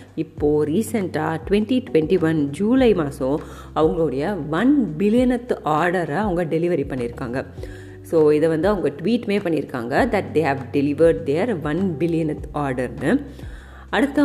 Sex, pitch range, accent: female, 155-230 Hz, native